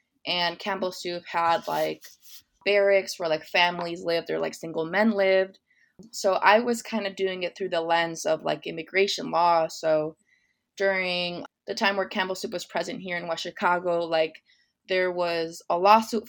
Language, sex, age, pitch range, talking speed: English, female, 20-39, 175-210 Hz, 175 wpm